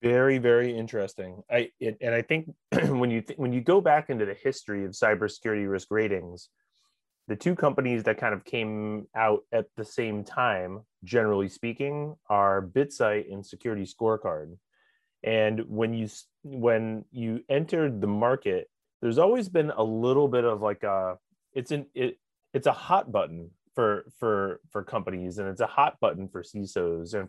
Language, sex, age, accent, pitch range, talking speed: English, male, 30-49, American, 100-125 Hz, 170 wpm